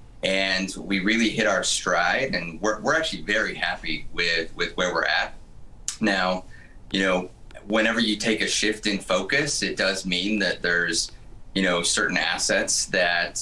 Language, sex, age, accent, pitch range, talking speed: English, male, 30-49, American, 90-110 Hz, 165 wpm